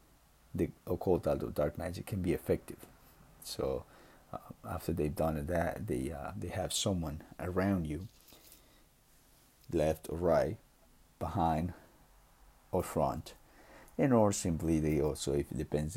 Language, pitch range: English, 75-90 Hz